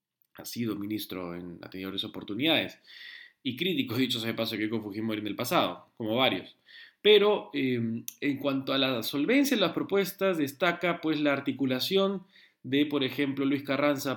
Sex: male